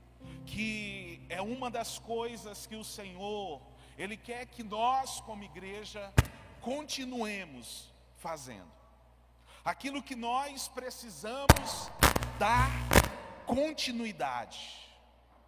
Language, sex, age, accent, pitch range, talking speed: Portuguese, male, 40-59, Brazilian, 170-240 Hz, 85 wpm